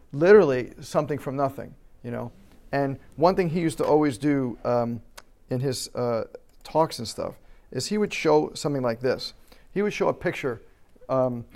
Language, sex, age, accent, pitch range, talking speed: English, male, 50-69, American, 140-200 Hz, 175 wpm